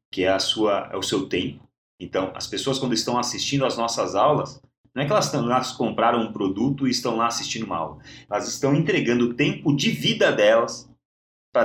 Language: Portuguese